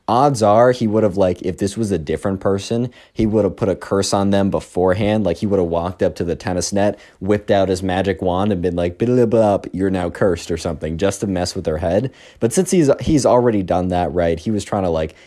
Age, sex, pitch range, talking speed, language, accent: 20-39, male, 95-125 Hz, 250 wpm, English, American